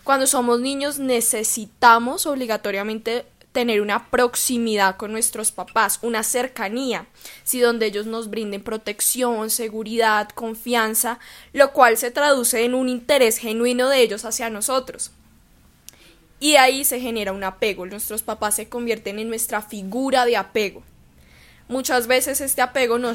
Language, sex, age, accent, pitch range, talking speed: Spanish, female, 10-29, Colombian, 215-250 Hz, 135 wpm